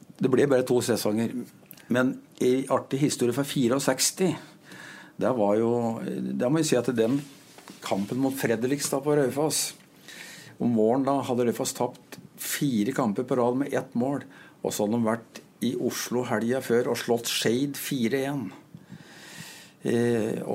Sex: male